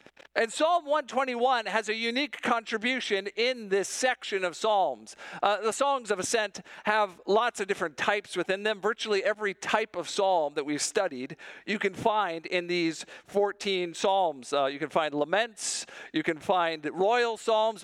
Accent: American